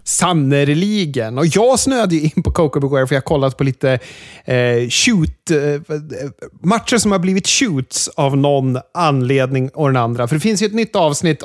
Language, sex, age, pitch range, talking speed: Swedish, male, 30-49, 130-170 Hz, 190 wpm